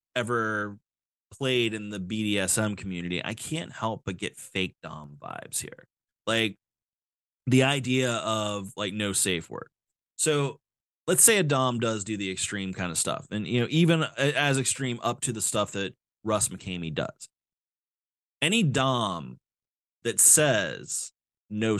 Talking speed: 150 wpm